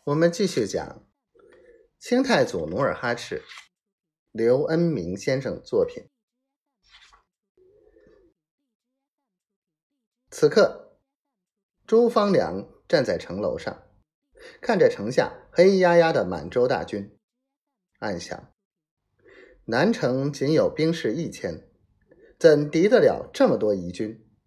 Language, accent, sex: Chinese, native, male